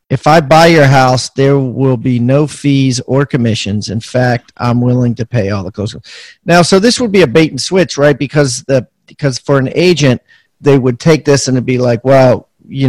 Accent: American